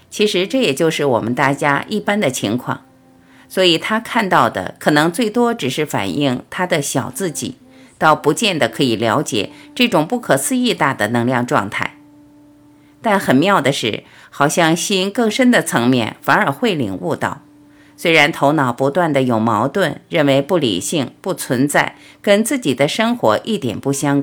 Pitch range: 135-200 Hz